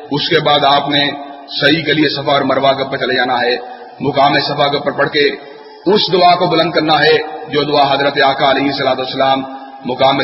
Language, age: Urdu, 40-59